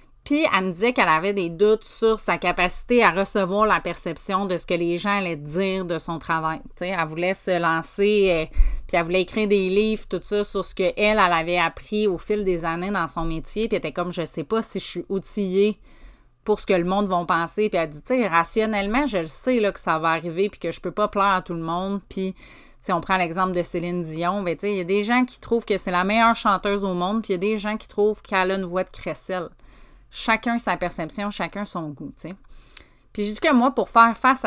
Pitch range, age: 170-205 Hz, 30-49